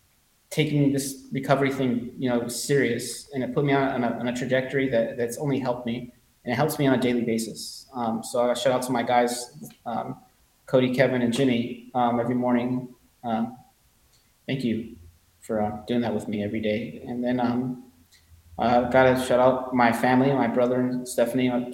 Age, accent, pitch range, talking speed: 20-39, American, 120-130 Hz, 190 wpm